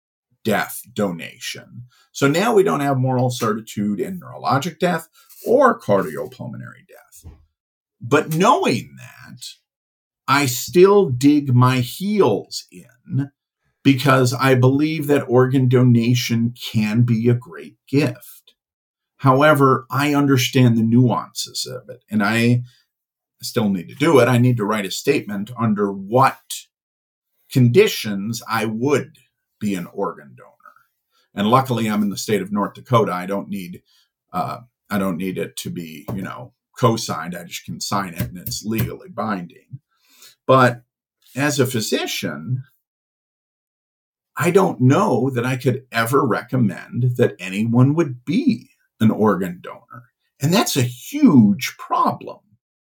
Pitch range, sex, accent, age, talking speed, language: 115-140 Hz, male, American, 50-69, 135 wpm, English